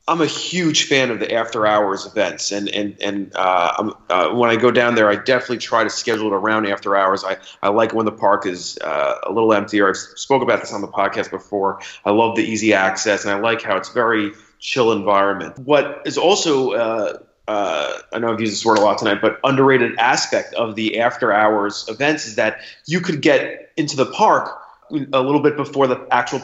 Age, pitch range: 30-49, 110-145 Hz